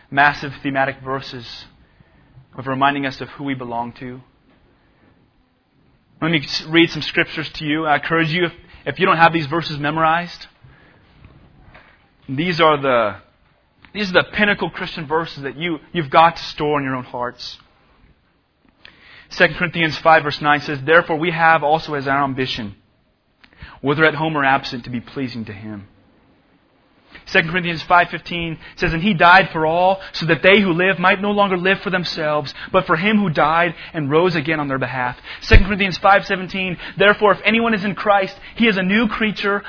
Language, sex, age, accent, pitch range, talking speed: English, male, 30-49, American, 145-200 Hz, 175 wpm